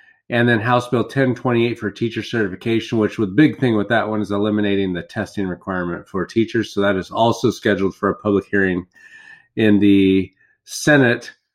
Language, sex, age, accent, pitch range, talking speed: English, male, 30-49, American, 105-125 Hz, 175 wpm